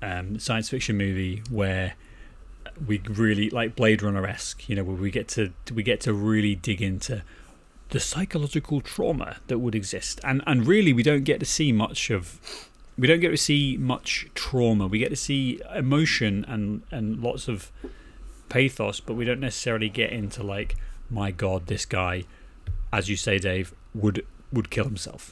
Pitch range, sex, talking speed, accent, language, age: 100-125 Hz, male, 175 wpm, British, English, 30-49